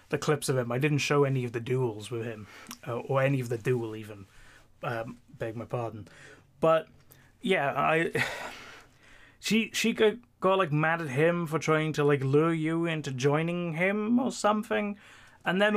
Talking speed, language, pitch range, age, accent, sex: 180 wpm, English, 125-175 Hz, 20-39, British, male